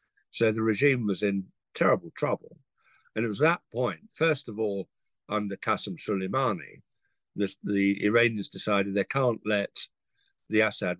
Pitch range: 95-120 Hz